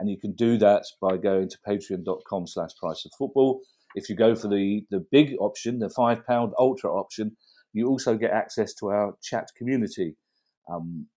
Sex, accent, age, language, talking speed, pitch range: male, British, 40-59, English, 170 wpm, 100-130 Hz